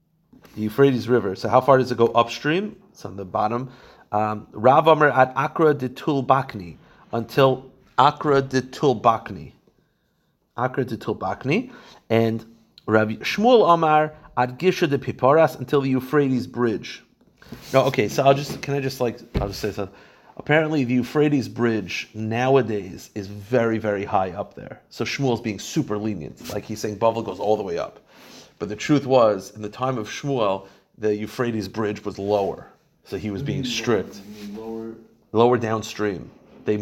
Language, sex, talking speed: English, male, 160 wpm